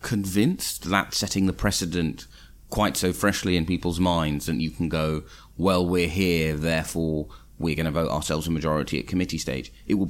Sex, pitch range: male, 75-100 Hz